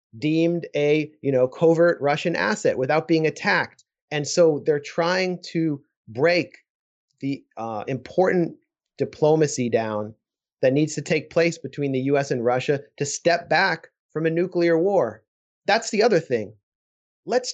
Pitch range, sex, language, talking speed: 125-170 Hz, male, English, 150 wpm